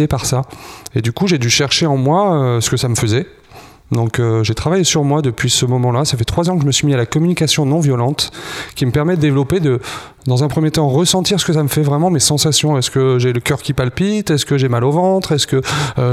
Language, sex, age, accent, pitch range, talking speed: French, male, 30-49, French, 130-155 Hz, 280 wpm